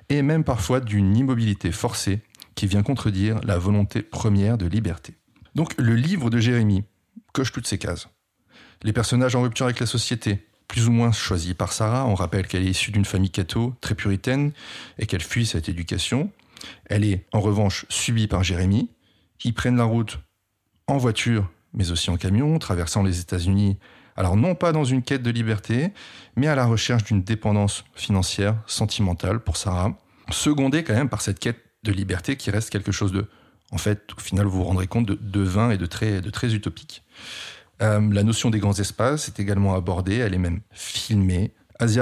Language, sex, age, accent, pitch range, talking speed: French, male, 30-49, French, 100-120 Hz, 190 wpm